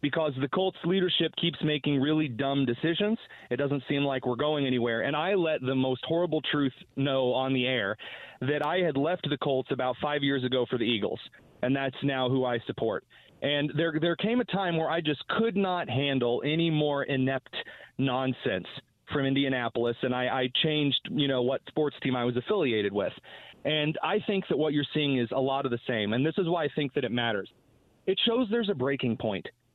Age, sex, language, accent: 30-49, male, English, American